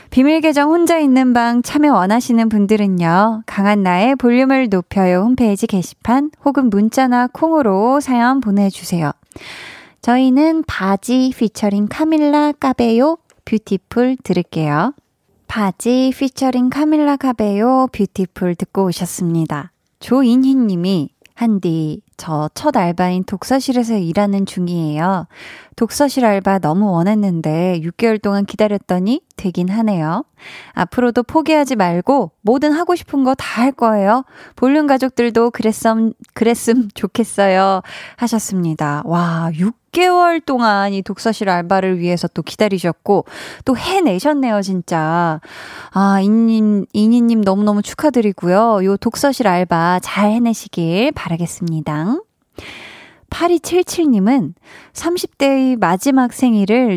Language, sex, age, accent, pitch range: Korean, female, 20-39, native, 190-260 Hz